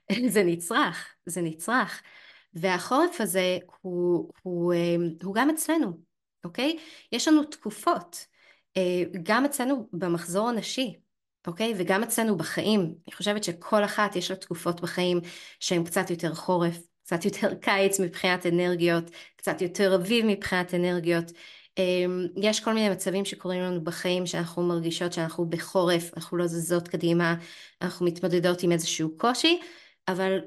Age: 20-39